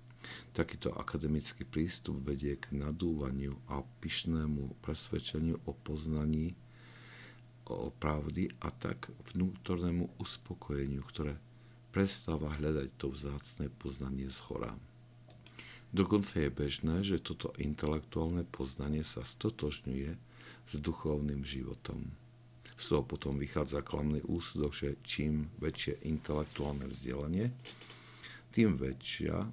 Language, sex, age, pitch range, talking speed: Slovak, male, 60-79, 70-85 Hz, 100 wpm